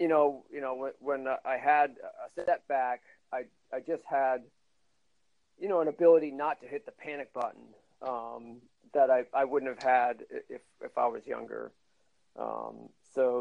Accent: American